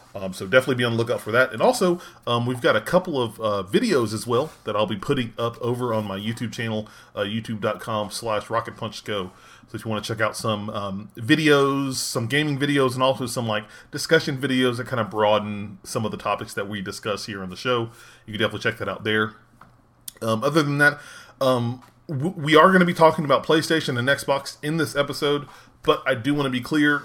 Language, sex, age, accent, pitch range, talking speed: English, male, 30-49, American, 110-140 Hz, 225 wpm